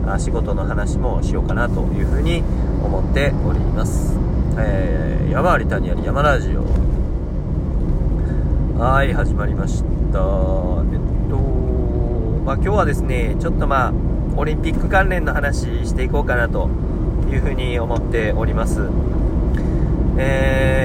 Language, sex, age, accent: Japanese, male, 40-59, native